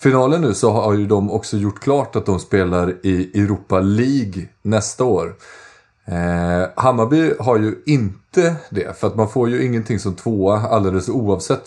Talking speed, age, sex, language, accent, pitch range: 165 wpm, 30-49, male, Swedish, native, 90-115 Hz